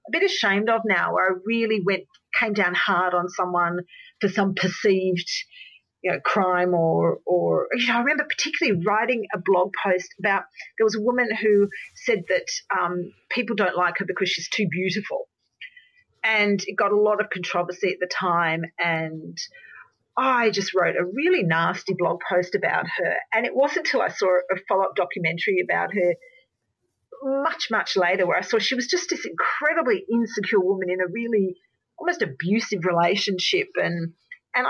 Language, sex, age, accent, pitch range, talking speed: English, female, 40-59, Australian, 180-250 Hz, 175 wpm